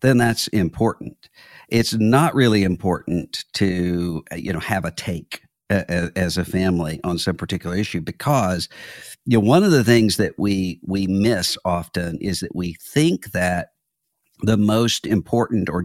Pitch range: 90-115 Hz